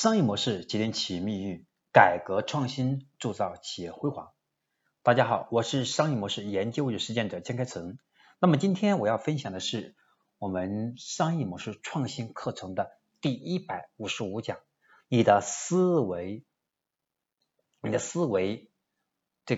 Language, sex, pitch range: Chinese, male, 105-150 Hz